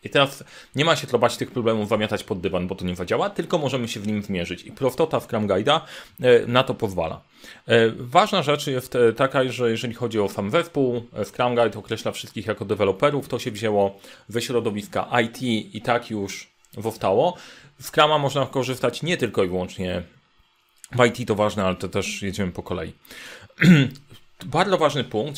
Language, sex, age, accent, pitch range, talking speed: Polish, male, 30-49, native, 115-145 Hz, 180 wpm